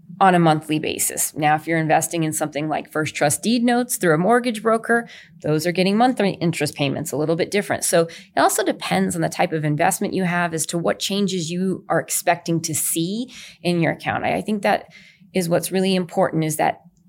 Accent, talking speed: American, 220 wpm